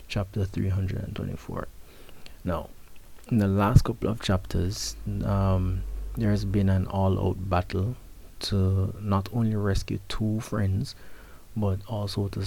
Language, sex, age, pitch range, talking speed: English, male, 30-49, 95-105 Hz, 120 wpm